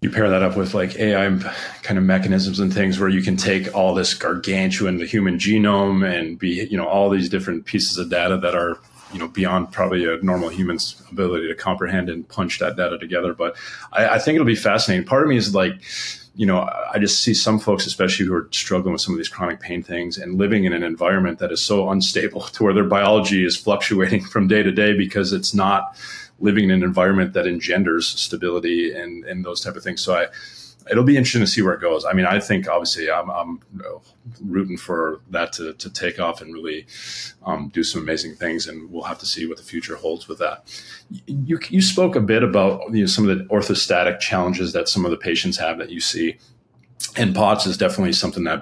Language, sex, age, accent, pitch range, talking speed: English, male, 30-49, American, 90-105 Hz, 225 wpm